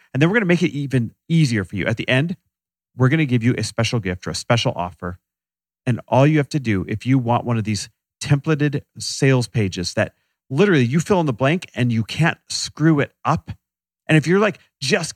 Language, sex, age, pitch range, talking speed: English, male, 40-59, 110-150 Hz, 235 wpm